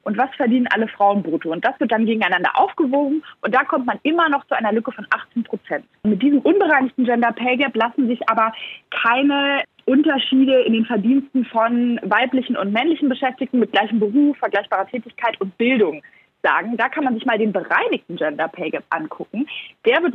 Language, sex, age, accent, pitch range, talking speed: German, female, 20-39, German, 220-280 Hz, 185 wpm